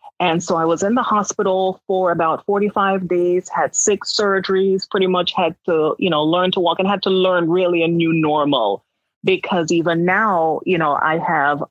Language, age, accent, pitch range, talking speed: English, 30-49, American, 155-190 Hz, 195 wpm